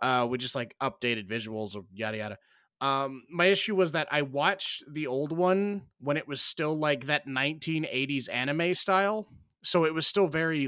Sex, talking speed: male, 180 wpm